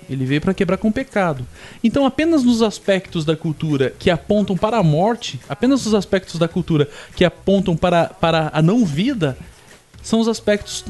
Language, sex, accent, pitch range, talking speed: Portuguese, male, Brazilian, 150-200 Hz, 180 wpm